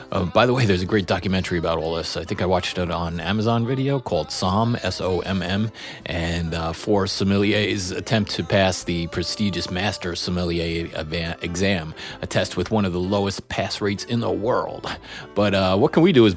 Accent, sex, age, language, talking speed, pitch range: American, male, 30-49, English, 195 wpm, 95-115 Hz